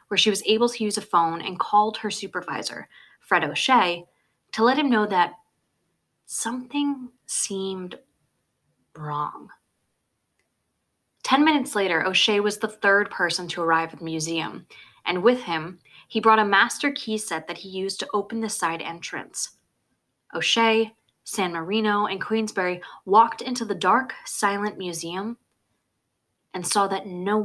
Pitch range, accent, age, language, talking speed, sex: 165-220 Hz, American, 20-39, English, 145 wpm, female